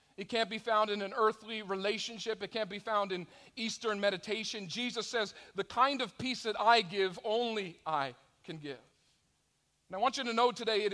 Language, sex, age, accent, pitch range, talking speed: English, male, 40-59, American, 155-215 Hz, 195 wpm